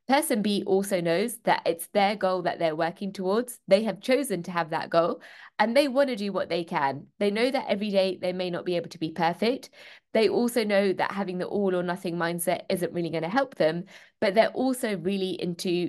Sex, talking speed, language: female, 225 wpm, English